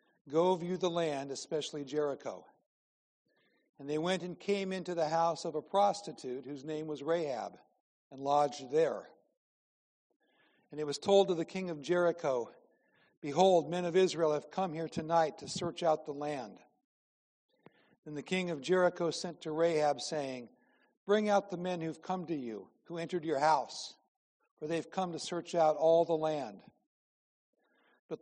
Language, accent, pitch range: English, American, 155-180 Hz